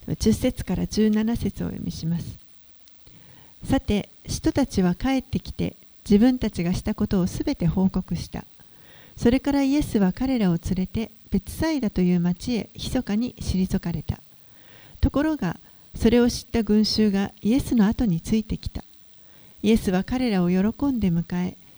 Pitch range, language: 180-235 Hz, Japanese